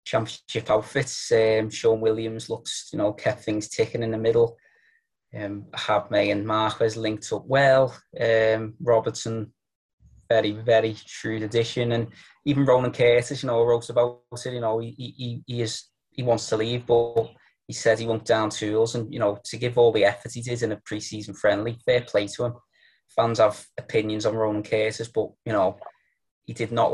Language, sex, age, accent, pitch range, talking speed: English, male, 20-39, British, 105-125 Hz, 185 wpm